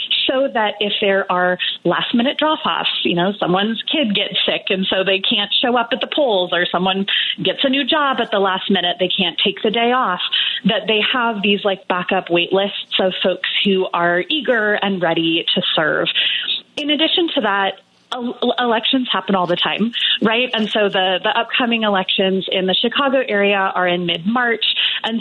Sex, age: female, 30-49